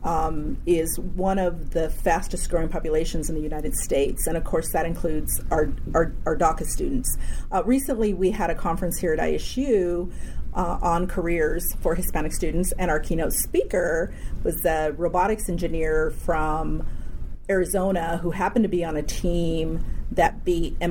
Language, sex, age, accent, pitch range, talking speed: English, female, 40-59, American, 160-195 Hz, 160 wpm